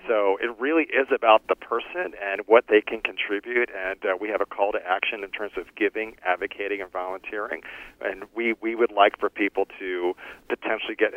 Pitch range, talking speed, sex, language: 100-125 Hz, 200 wpm, male, English